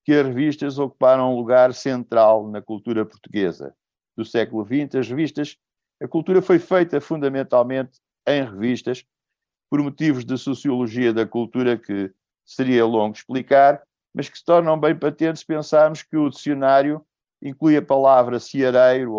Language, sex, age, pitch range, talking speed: Portuguese, male, 60-79, 115-150 Hz, 145 wpm